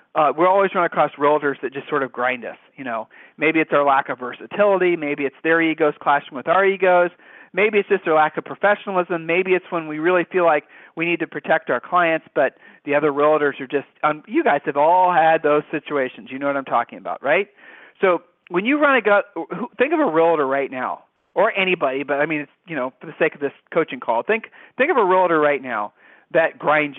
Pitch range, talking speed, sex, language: 150-195 Hz, 235 wpm, male, English